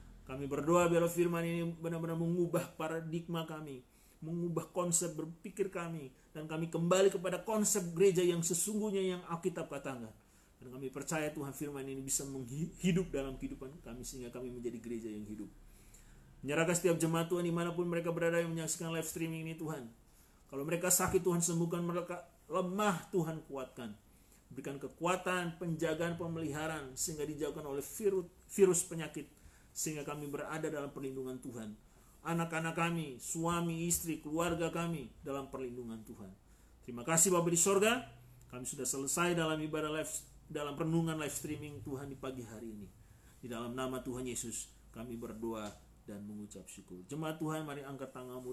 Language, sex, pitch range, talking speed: Indonesian, male, 130-170 Hz, 150 wpm